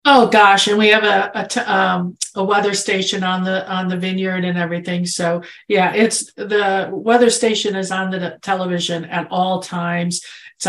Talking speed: 185 wpm